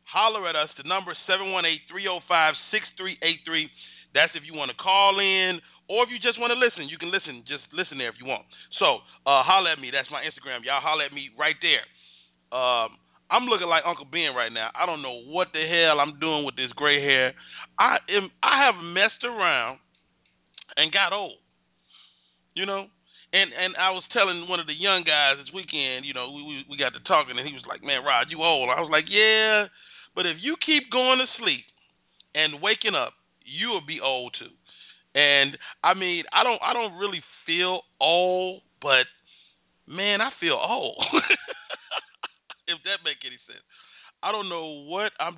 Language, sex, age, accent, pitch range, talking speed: English, male, 30-49, American, 140-195 Hz, 205 wpm